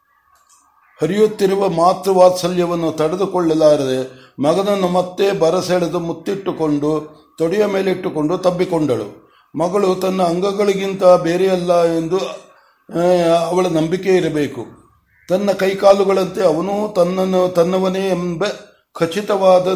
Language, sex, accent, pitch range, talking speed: Kannada, male, native, 165-195 Hz, 75 wpm